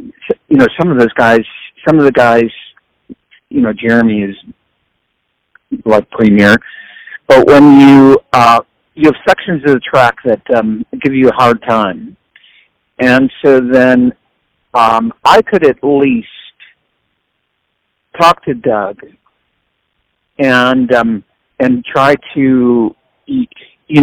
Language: English